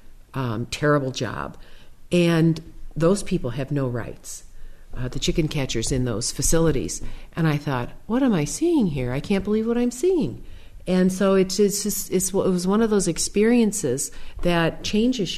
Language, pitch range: English, 150-185 Hz